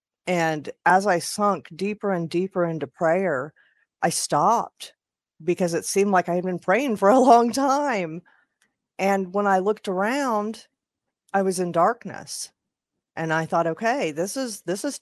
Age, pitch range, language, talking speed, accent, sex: 40-59, 155-195 Hz, English, 160 wpm, American, female